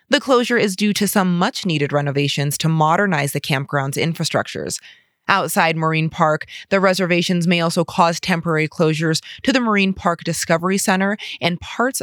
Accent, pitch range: American, 155-195 Hz